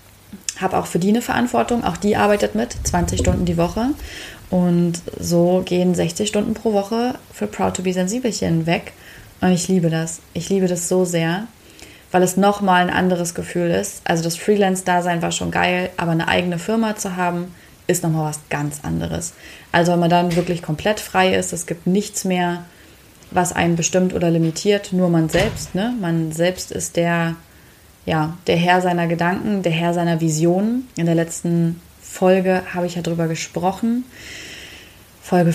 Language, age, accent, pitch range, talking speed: German, 20-39, German, 170-195 Hz, 175 wpm